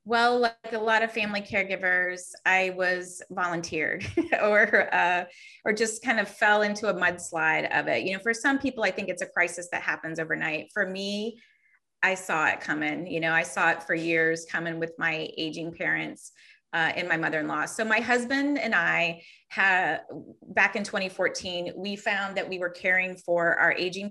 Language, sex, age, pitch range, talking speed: English, female, 30-49, 175-220 Hz, 180 wpm